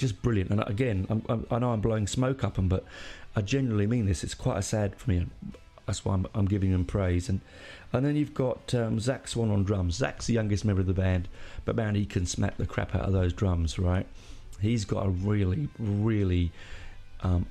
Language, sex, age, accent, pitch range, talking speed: English, male, 40-59, British, 95-120 Hz, 225 wpm